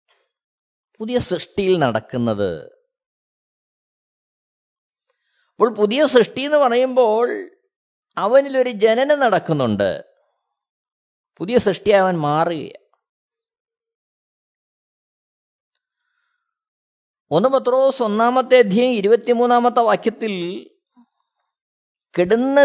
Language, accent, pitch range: Malayalam, native, 180-245 Hz